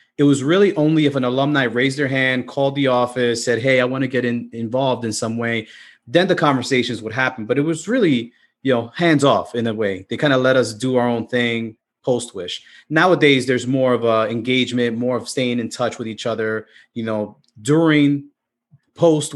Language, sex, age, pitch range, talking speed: English, male, 30-49, 120-150 Hz, 215 wpm